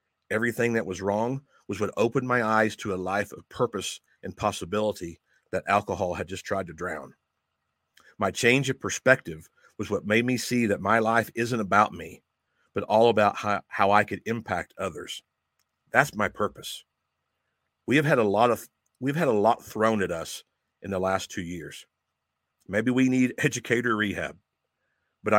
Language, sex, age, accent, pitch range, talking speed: English, male, 50-69, American, 90-115 Hz, 175 wpm